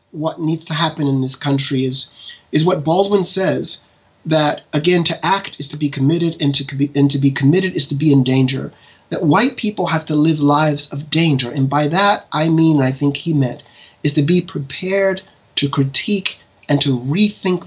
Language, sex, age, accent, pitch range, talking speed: English, male, 30-49, American, 140-185 Hz, 200 wpm